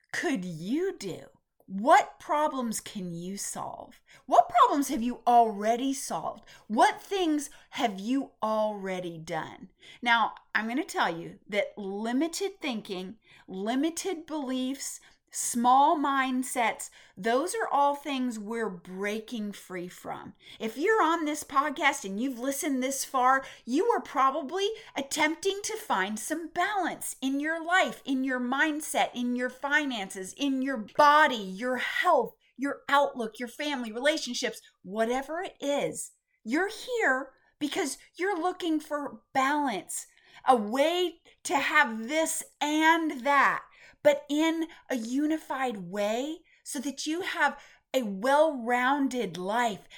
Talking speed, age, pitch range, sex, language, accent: 130 wpm, 30-49, 230-320 Hz, female, English, American